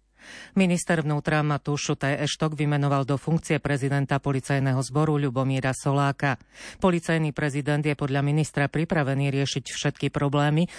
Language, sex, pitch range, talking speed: Slovak, female, 135-155 Hz, 120 wpm